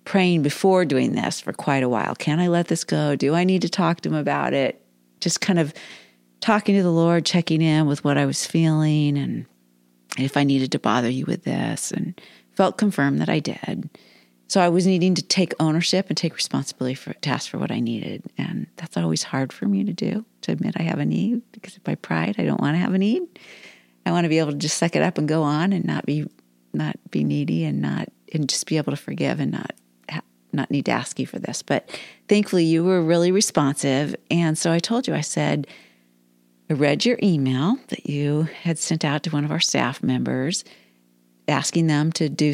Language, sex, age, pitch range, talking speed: English, female, 50-69, 135-180 Hz, 225 wpm